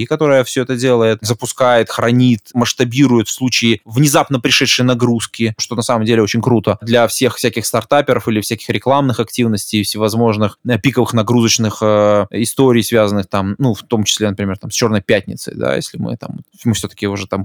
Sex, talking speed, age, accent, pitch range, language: male, 170 wpm, 20-39, native, 110-135 Hz, Russian